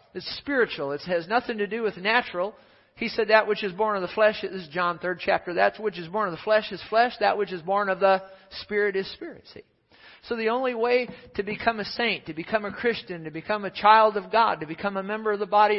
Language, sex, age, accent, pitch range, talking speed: English, male, 50-69, American, 170-215 Hz, 255 wpm